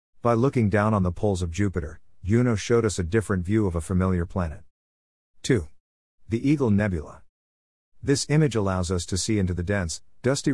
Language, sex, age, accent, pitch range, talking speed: English, male, 50-69, American, 85-115 Hz, 180 wpm